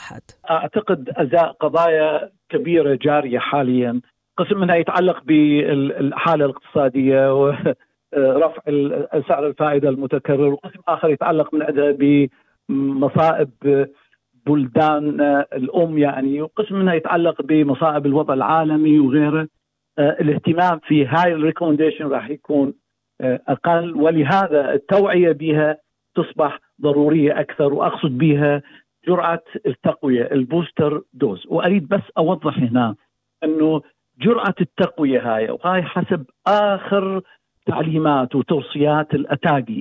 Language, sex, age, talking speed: Arabic, male, 50-69, 95 wpm